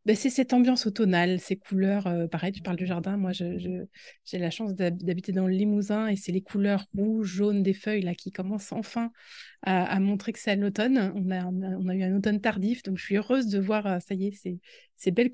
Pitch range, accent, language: 185-215 Hz, French, French